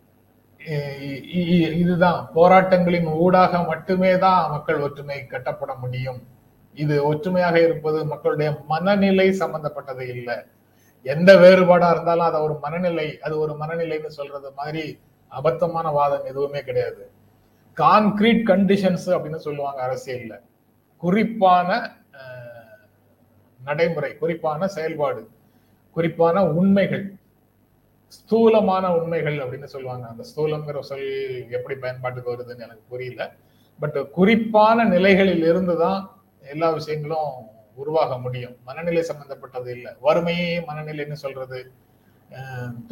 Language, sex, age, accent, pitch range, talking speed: Tamil, male, 30-49, native, 125-175 Hz, 85 wpm